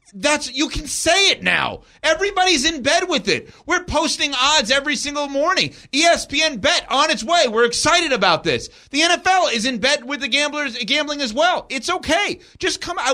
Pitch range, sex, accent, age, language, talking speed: 185-290 Hz, male, American, 30-49, English, 190 wpm